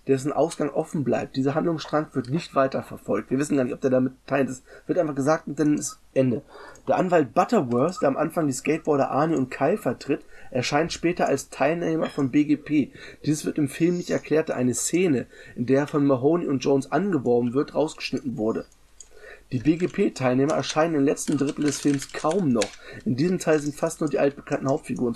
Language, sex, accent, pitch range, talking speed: German, male, German, 130-155 Hz, 195 wpm